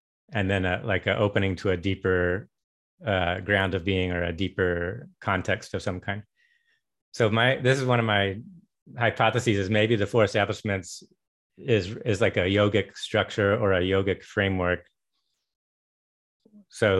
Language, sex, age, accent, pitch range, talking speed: English, male, 30-49, American, 95-115 Hz, 155 wpm